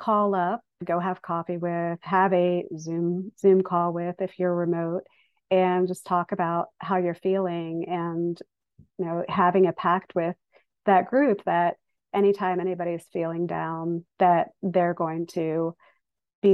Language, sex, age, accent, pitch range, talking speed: English, female, 40-59, American, 170-190 Hz, 150 wpm